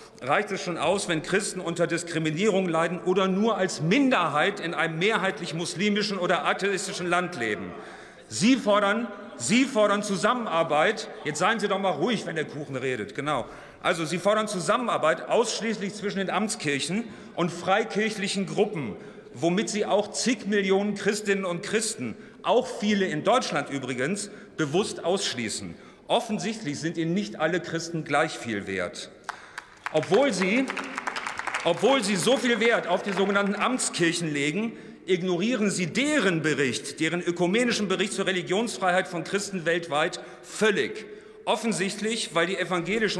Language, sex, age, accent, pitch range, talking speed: German, male, 40-59, German, 170-210 Hz, 140 wpm